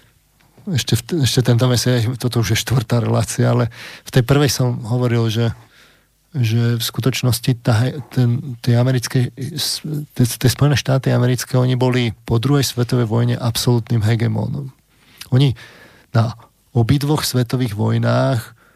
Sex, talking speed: male, 135 wpm